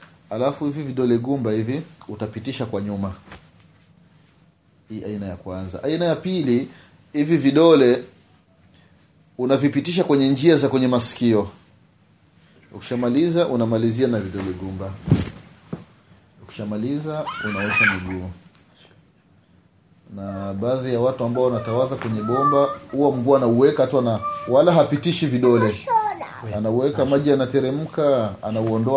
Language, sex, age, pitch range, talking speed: Swahili, male, 30-49, 105-140 Hz, 105 wpm